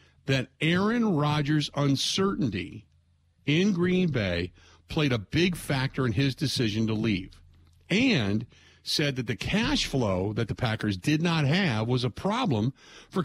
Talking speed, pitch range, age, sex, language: 145 wpm, 125-175 Hz, 50-69, male, English